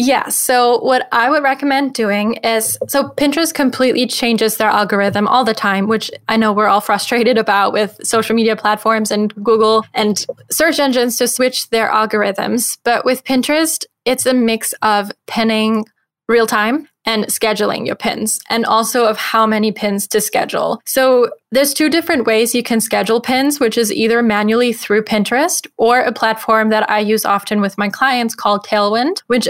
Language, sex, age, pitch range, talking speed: English, female, 10-29, 210-250 Hz, 175 wpm